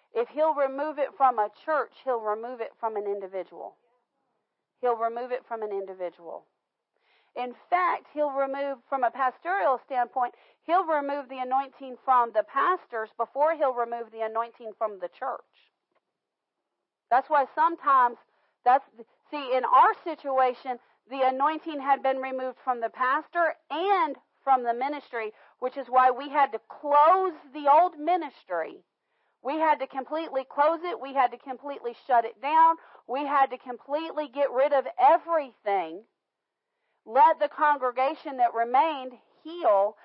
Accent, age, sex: American, 40-59, female